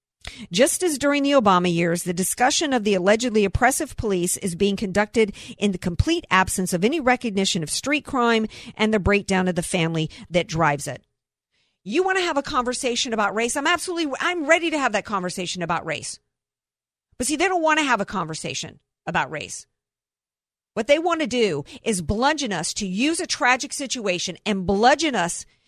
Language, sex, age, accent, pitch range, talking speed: English, female, 50-69, American, 185-250 Hz, 185 wpm